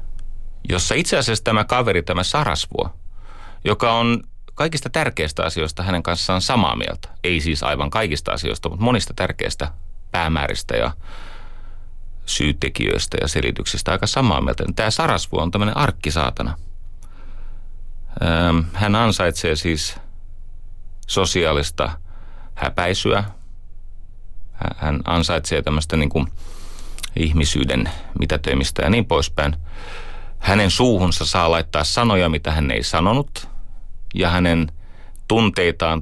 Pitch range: 80-95 Hz